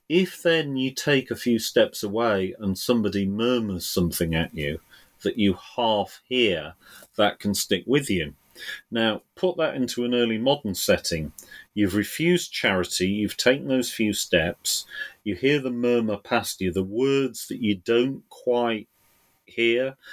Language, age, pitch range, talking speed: English, 40-59, 95-125 Hz, 155 wpm